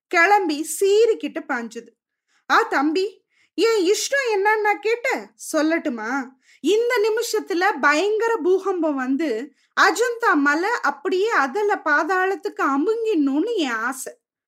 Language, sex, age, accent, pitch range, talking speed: Tamil, female, 20-39, native, 300-415 Hz, 60 wpm